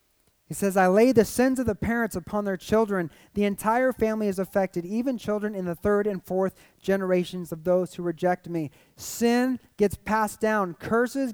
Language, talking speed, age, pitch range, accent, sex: English, 185 wpm, 30-49, 185-240 Hz, American, male